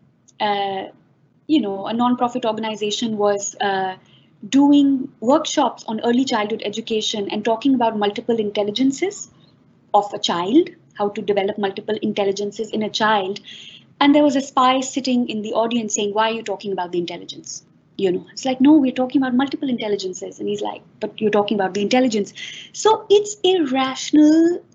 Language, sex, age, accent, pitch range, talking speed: English, female, 20-39, Indian, 210-280 Hz, 165 wpm